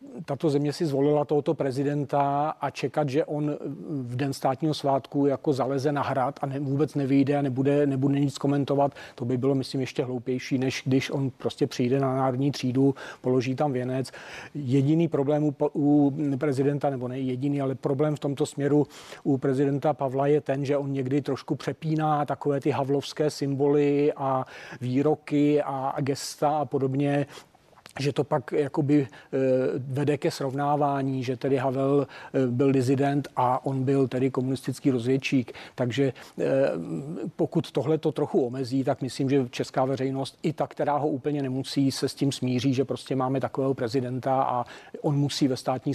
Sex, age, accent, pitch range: male, 40-59, native, 135-145 Hz